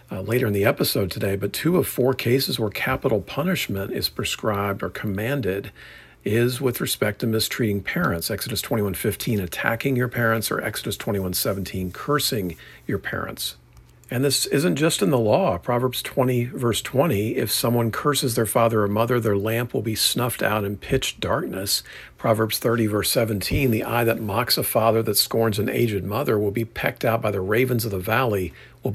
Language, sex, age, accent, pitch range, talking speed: English, male, 50-69, American, 100-125 Hz, 185 wpm